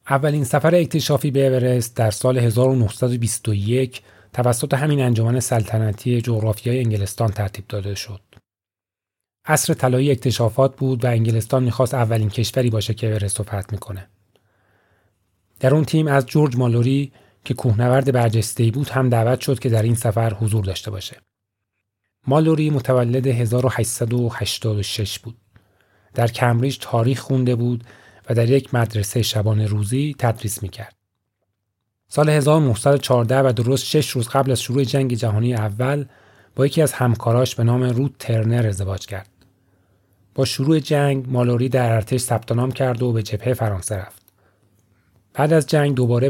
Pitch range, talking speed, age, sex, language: 105-130 Hz, 140 wpm, 30-49, male, Persian